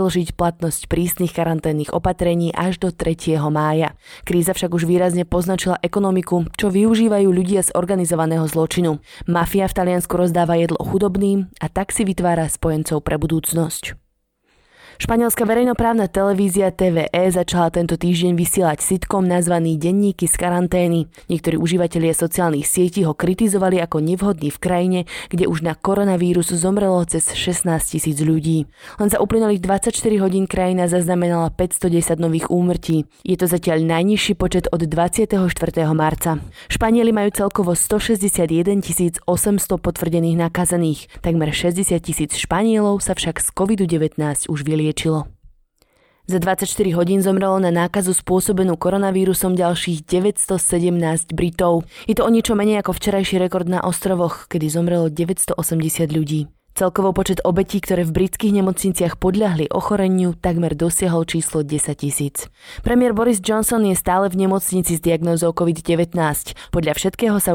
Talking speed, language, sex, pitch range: 135 wpm, Slovak, female, 165-190 Hz